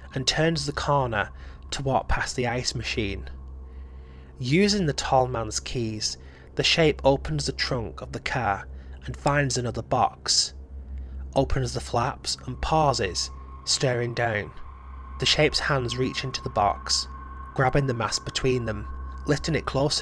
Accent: British